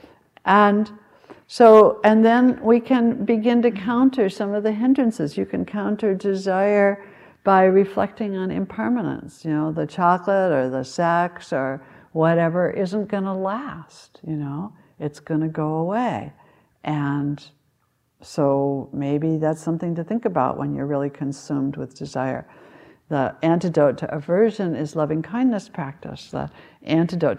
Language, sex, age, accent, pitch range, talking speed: English, female, 60-79, American, 145-200 Hz, 140 wpm